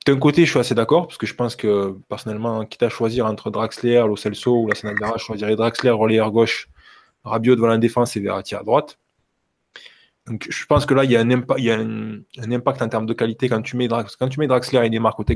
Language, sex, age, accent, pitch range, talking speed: French, male, 20-39, French, 105-125 Hz, 260 wpm